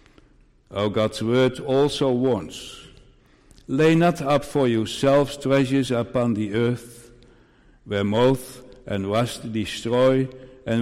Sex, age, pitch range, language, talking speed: male, 60-79, 110-135 Hz, English, 115 wpm